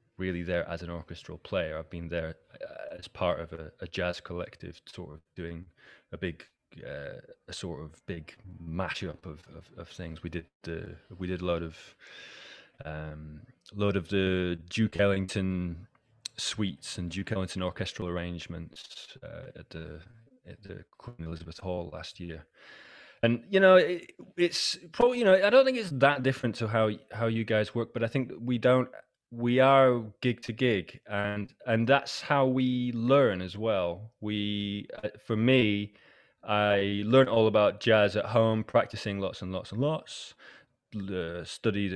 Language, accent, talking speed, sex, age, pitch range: English, British, 165 wpm, male, 20-39, 90-115 Hz